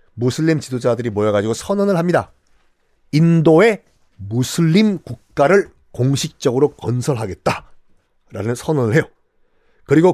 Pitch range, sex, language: 115-180 Hz, male, Korean